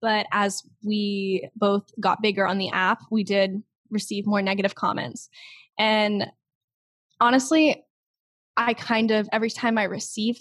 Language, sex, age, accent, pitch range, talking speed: English, female, 10-29, American, 205-250 Hz, 140 wpm